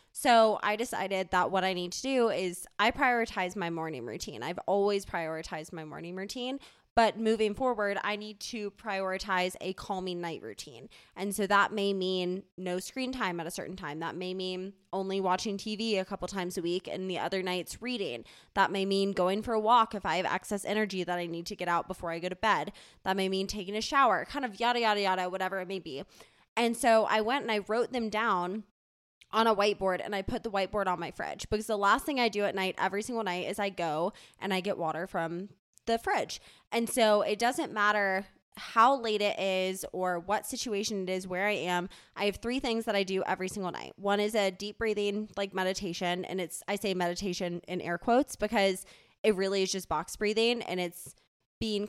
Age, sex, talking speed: 20-39, female, 220 wpm